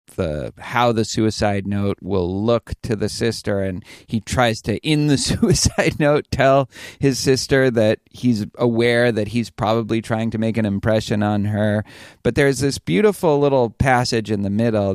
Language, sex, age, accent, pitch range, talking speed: English, male, 30-49, American, 105-130 Hz, 170 wpm